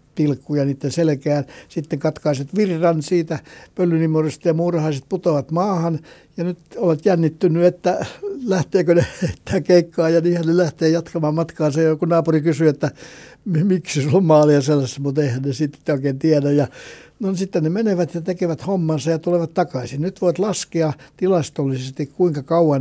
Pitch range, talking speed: 150-180 Hz, 155 wpm